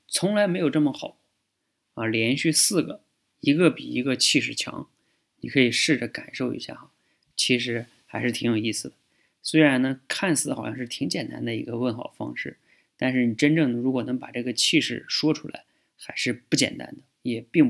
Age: 20-39